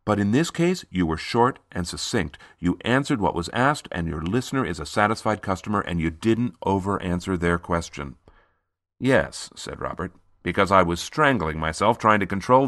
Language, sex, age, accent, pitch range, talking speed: English, male, 50-69, American, 85-105 Hz, 180 wpm